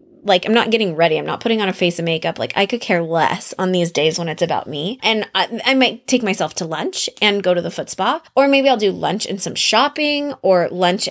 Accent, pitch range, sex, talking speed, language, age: American, 180-230 Hz, female, 265 wpm, English, 20-39